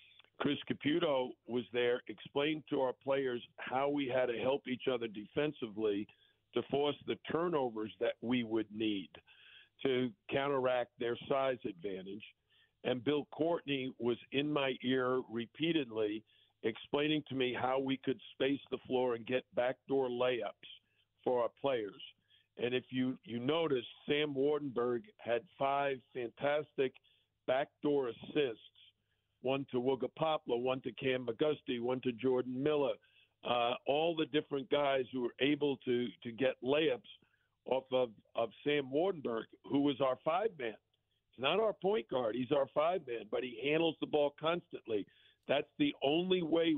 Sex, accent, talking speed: male, American, 150 wpm